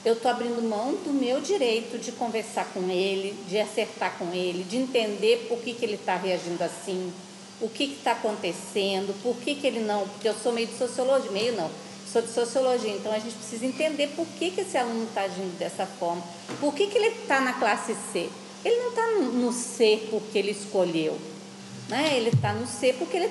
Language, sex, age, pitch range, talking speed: Portuguese, female, 40-59, 210-275 Hz, 210 wpm